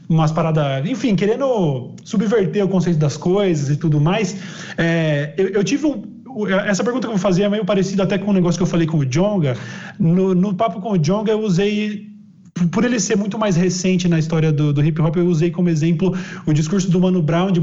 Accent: Brazilian